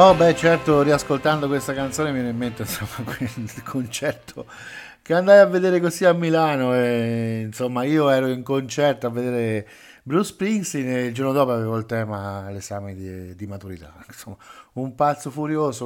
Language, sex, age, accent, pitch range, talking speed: Italian, male, 50-69, native, 115-175 Hz, 175 wpm